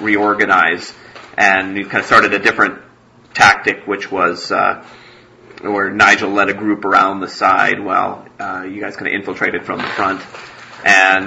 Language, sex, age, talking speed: English, male, 30-49, 165 wpm